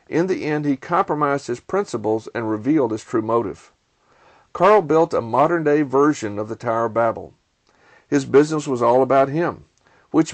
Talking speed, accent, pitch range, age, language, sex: 170 wpm, American, 125-150 Hz, 50-69, English, male